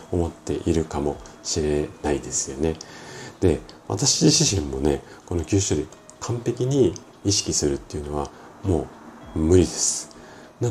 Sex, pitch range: male, 80-130 Hz